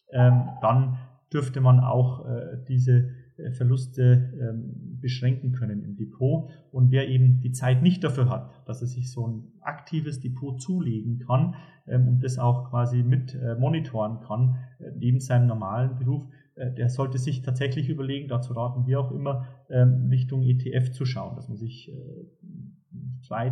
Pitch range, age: 125-140 Hz, 40-59